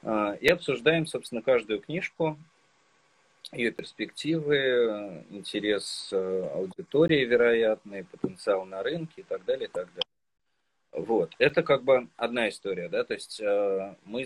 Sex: male